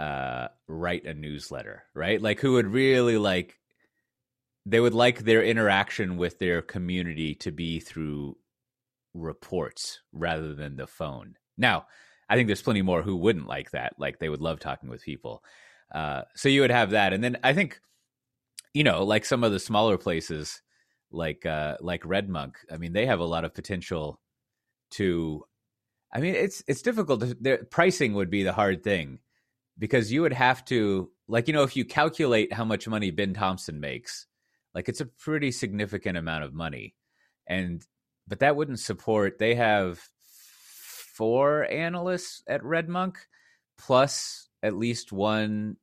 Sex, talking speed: male, 170 wpm